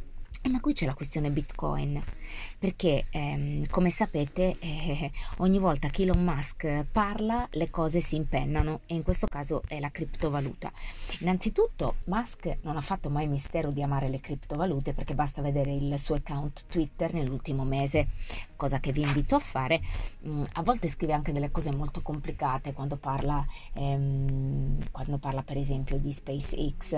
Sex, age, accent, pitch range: female, 30-49, native, 140-175 Hz